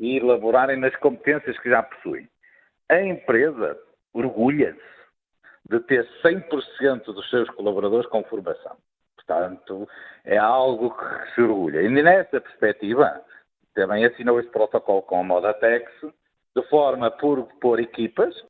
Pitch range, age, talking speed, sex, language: 110-150 Hz, 50-69, 125 wpm, male, Portuguese